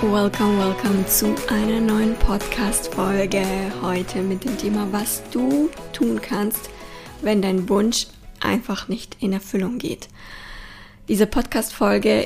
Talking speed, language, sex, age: 115 wpm, German, female, 20-39